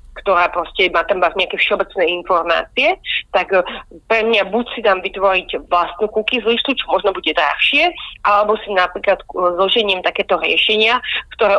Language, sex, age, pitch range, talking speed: Slovak, female, 30-49, 180-210 Hz, 140 wpm